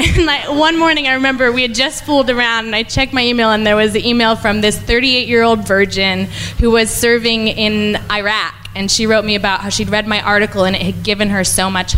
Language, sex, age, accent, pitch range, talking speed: English, female, 20-39, American, 205-265 Hz, 235 wpm